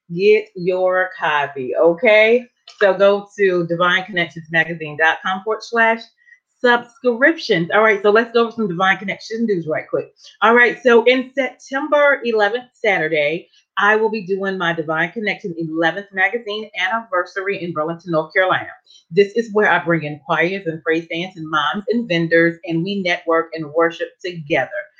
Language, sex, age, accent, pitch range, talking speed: English, female, 30-49, American, 170-225 Hz, 155 wpm